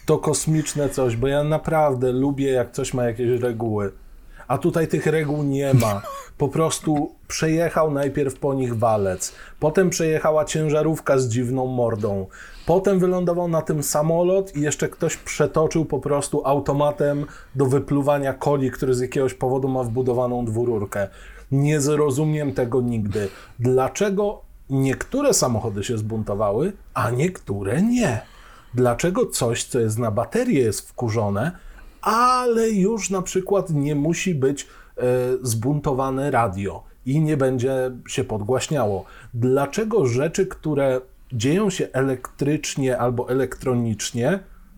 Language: Polish